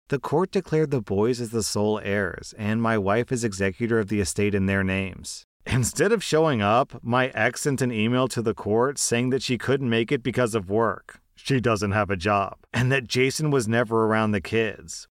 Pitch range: 110-140 Hz